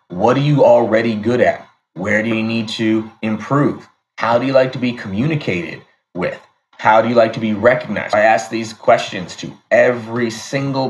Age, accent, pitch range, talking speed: 30-49, American, 105-125 Hz, 185 wpm